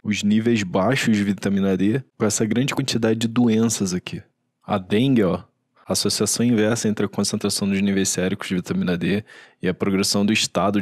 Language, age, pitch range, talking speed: Portuguese, 20-39, 95-115 Hz, 175 wpm